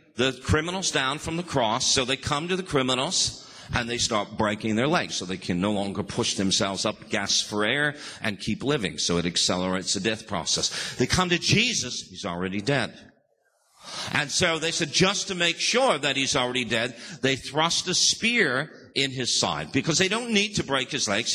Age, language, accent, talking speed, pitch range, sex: 50-69, English, American, 200 wpm, 125-180 Hz, male